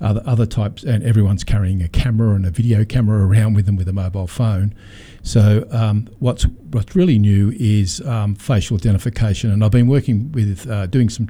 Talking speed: 190 wpm